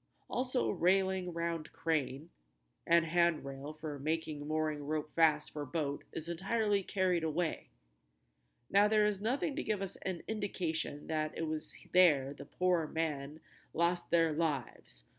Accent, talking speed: American, 140 wpm